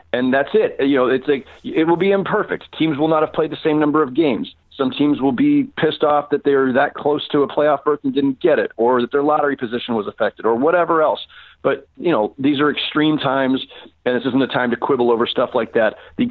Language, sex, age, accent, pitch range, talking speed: English, male, 40-59, American, 125-155 Hz, 250 wpm